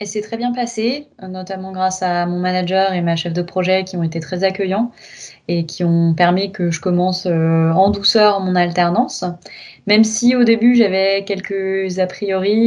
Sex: female